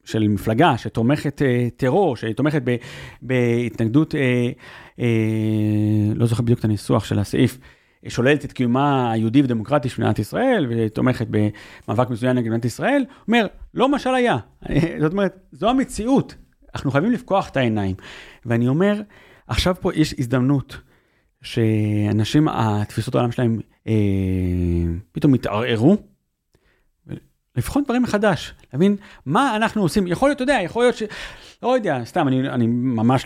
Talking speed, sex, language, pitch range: 140 wpm, male, Hebrew, 115-165 Hz